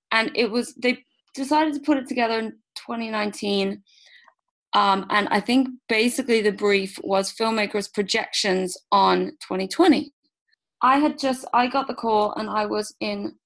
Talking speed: 150 wpm